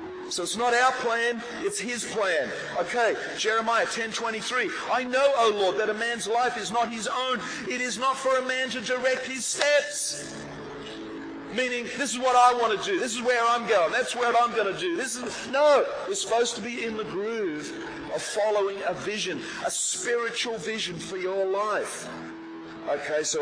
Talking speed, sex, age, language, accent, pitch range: 190 wpm, male, 40-59, English, Australian, 190-255 Hz